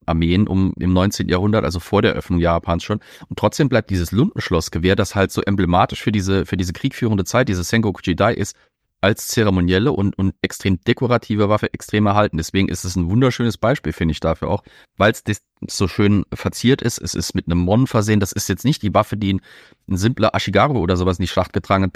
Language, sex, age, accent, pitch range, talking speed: German, male, 40-59, German, 90-110 Hz, 215 wpm